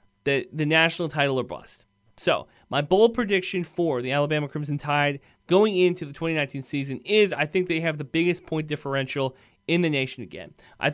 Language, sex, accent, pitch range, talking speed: English, male, American, 140-180 Hz, 185 wpm